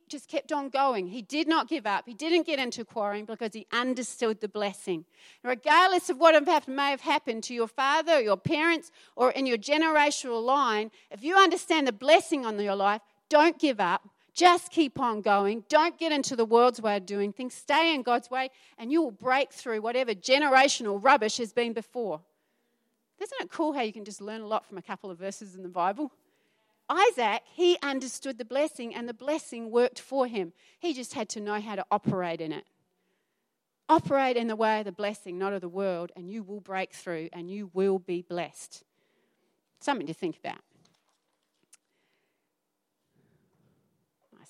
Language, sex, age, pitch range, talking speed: English, female, 40-59, 205-295 Hz, 190 wpm